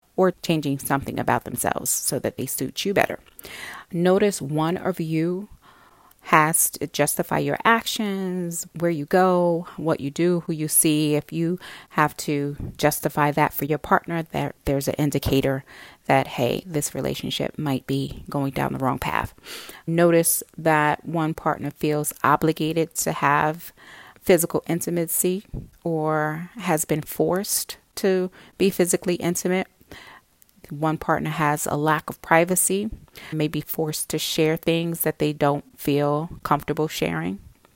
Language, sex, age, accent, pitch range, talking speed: English, female, 30-49, American, 150-180 Hz, 145 wpm